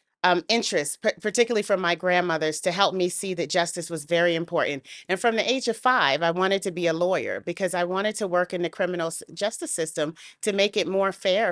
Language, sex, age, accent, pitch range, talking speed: English, female, 40-59, American, 175-205 Hz, 215 wpm